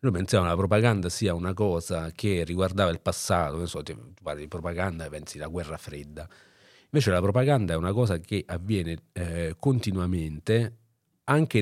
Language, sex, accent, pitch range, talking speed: Italian, male, native, 85-115 Hz, 175 wpm